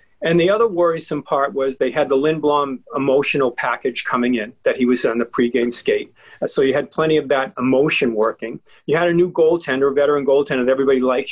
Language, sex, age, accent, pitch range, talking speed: English, male, 40-59, American, 135-185 Hz, 210 wpm